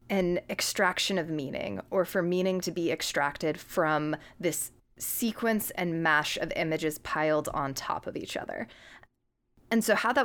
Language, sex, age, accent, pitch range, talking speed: English, female, 20-39, American, 160-190 Hz, 160 wpm